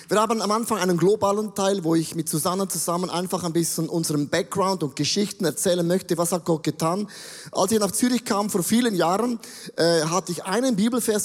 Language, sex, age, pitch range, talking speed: German, male, 20-39, 160-205 Hz, 200 wpm